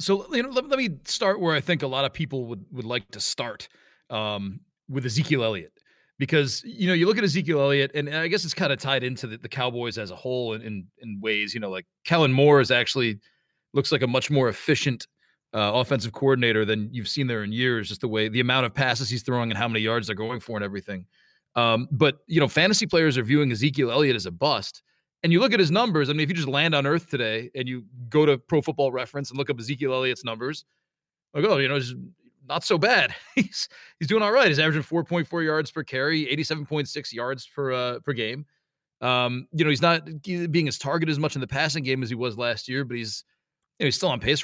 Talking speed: 250 wpm